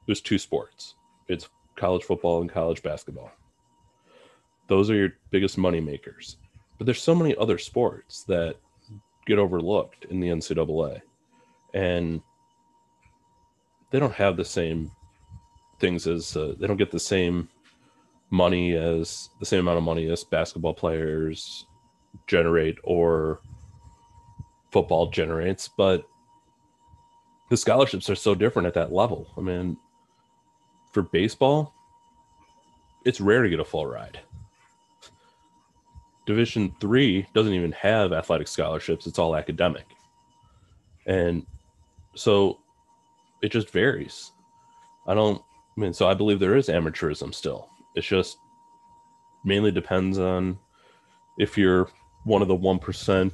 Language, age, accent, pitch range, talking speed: English, 30-49, American, 90-135 Hz, 125 wpm